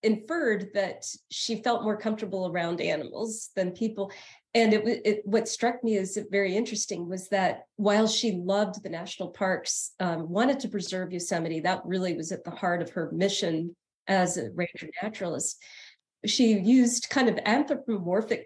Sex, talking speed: female, 165 wpm